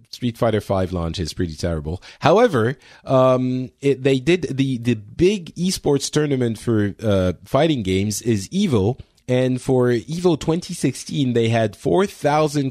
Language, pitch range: English, 100-140 Hz